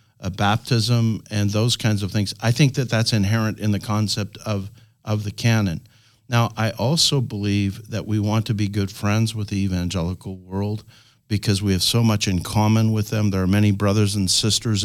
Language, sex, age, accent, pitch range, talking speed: English, male, 50-69, American, 105-120 Hz, 200 wpm